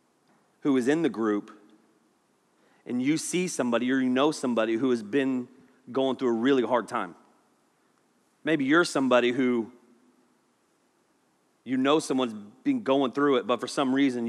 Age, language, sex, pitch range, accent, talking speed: 30-49, English, male, 115-145 Hz, American, 155 wpm